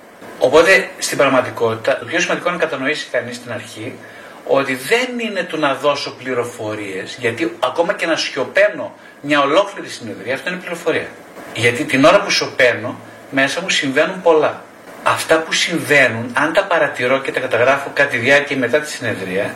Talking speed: 165 wpm